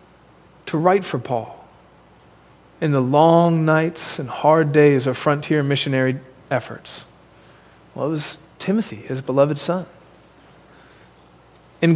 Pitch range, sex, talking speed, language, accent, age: 165-225 Hz, male, 115 wpm, English, American, 40-59